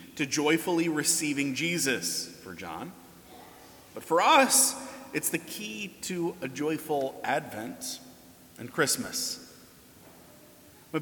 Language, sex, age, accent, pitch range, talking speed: English, male, 30-49, American, 140-190 Hz, 105 wpm